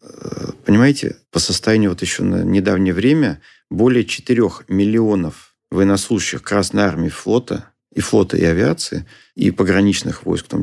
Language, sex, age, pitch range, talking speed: Russian, male, 40-59, 95-120 Hz, 135 wpm